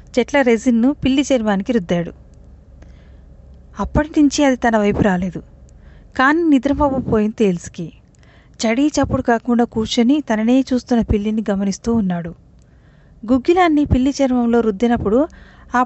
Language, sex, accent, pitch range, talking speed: Telugu, female, native, 195-265 Hz, 105 wpm